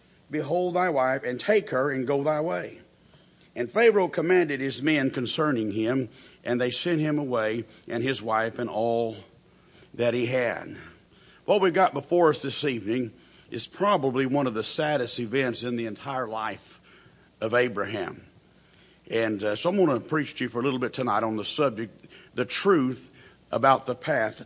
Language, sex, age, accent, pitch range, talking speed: English, male, 50-69, American, 125-160 Hz, 175 wpm